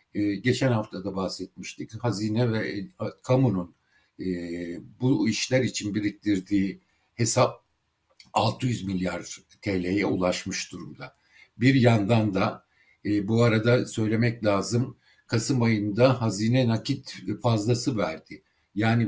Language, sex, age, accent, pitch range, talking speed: Turkish, male, 60-79, native, 100-125 Hz, 95 wpm